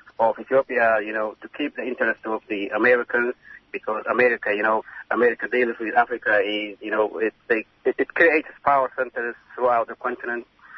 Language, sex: English, male